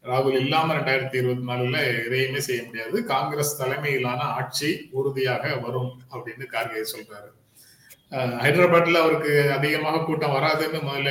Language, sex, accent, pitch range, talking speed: Tamil, male, native, 125-155 Hz, 120 wpm